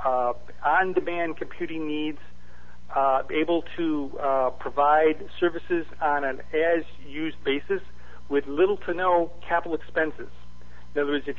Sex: male